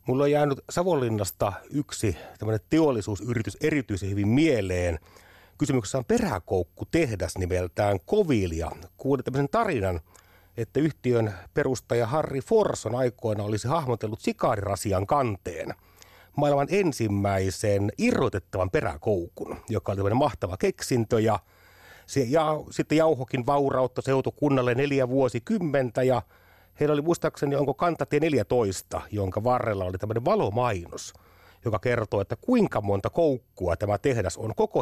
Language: Finnish